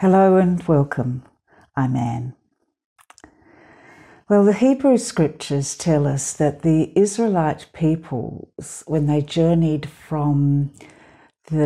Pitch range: 140-195 Hz